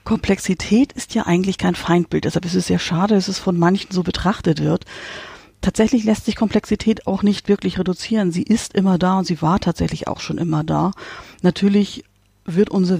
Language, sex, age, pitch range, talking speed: German, female, 50-69, 165-195 Hz, 190 wpm